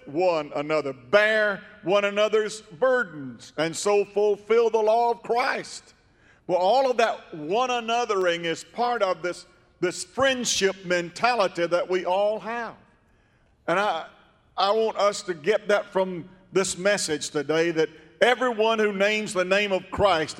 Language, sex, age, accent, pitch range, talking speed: English, male, 50-69, American, 160-210 Hz, 145 wpm